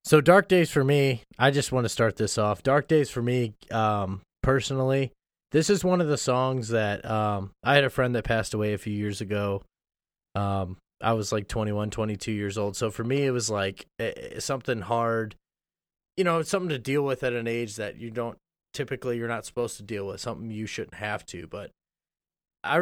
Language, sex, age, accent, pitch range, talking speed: English, male, 20-39, American, 105-130 Hz, 210 wpm